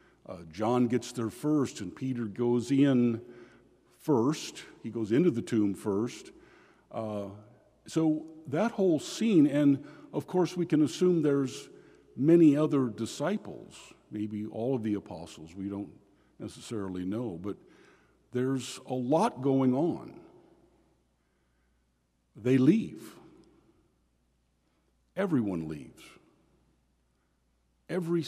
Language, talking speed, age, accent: English, 110 wpm, 50-69, American